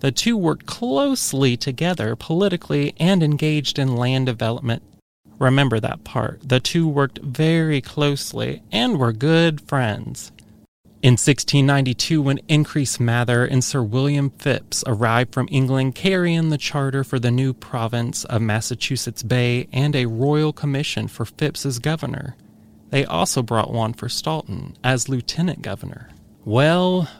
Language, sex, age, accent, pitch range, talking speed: English, male, 30-49, American, 120-150 Hz, 140 wpm